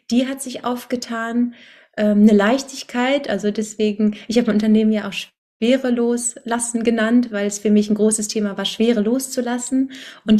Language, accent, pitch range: German, German, 200-235 Hz